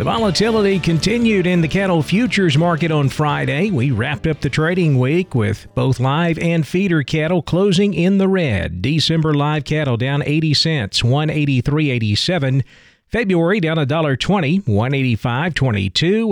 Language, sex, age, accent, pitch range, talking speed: English, male, 40-59, American, 125-165 Hz, 135 wpm